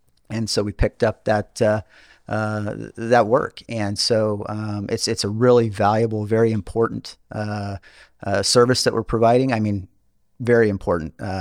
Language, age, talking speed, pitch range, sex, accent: English, 40-59, 160 wpm, 105-125 Hz, male, American